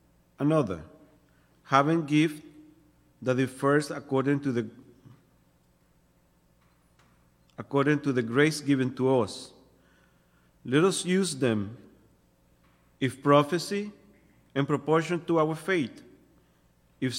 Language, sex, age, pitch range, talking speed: English, male, 40-59, 95-145 Hz, 95 wpm